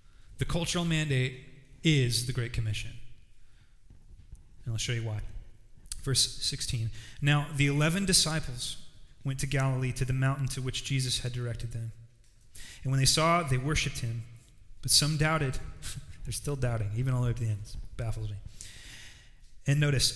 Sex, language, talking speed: male, English, 165 wpm